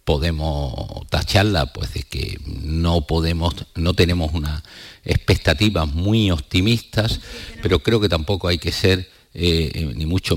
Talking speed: 135 wpm